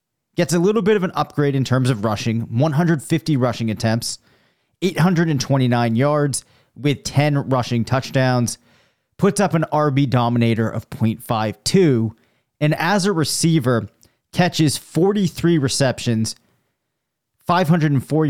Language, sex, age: English, male, 30-49